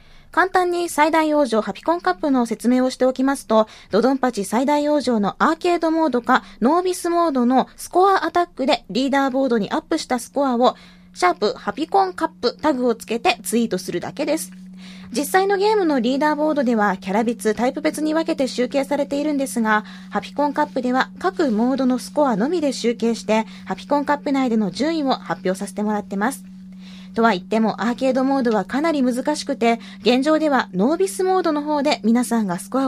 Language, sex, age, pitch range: Japanese, female, 20-39, 205-300 Hz